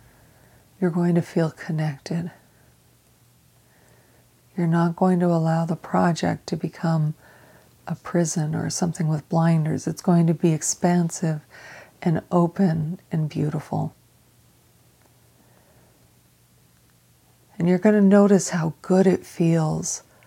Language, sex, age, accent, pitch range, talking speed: English, female, 40-59, American, 155-180 Hz, 115 wpm